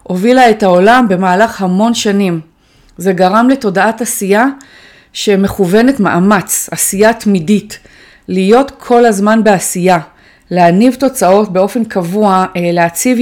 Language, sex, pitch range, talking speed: Hebrew, female, 180-230 Hz, 105 wpm